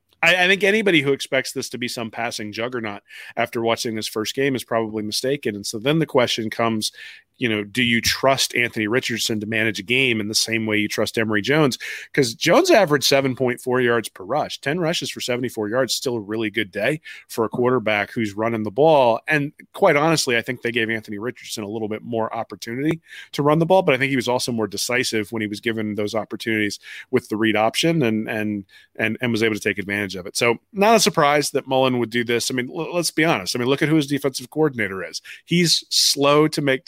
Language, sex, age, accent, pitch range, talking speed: English, male, 30-49, American, 110-130 Hz, 235 wpm